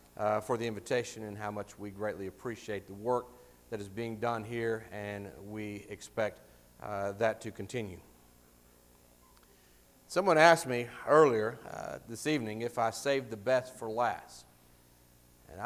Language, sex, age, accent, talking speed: English, male, 50-69, American, 150 wpm